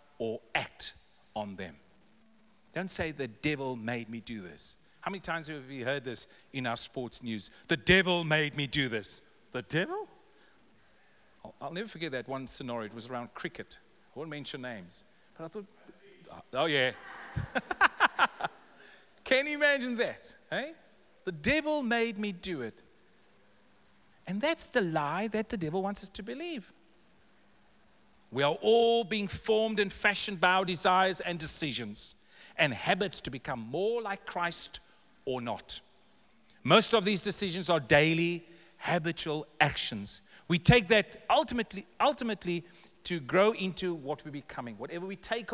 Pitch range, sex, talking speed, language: 135-210 Hz, male, 155 wpm, English